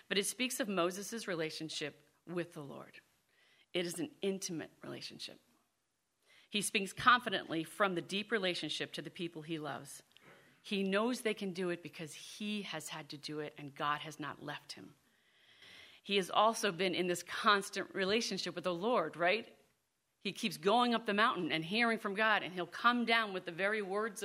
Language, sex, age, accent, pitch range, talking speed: English, female, 40-59, American, 170-225 Hz, 185 wpm